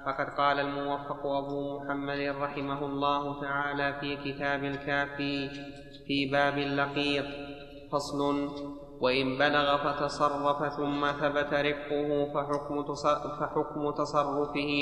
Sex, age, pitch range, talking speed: male, 20-39, 145-150 Hz, 95 wpm